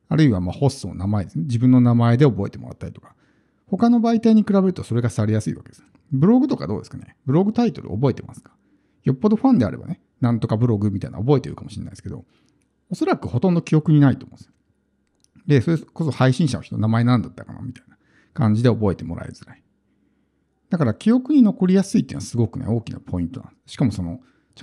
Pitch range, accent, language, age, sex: 115-155 Hz, native, Japanese, 50-69, male